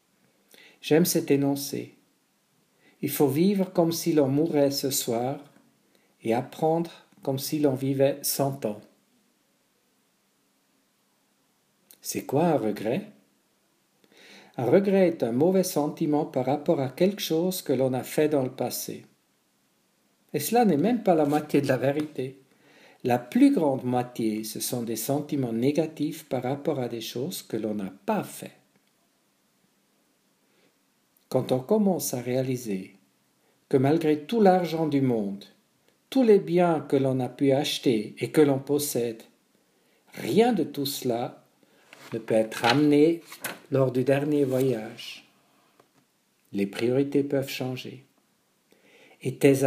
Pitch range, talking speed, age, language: 125-155 Hz, 135 wpm, 50-69, English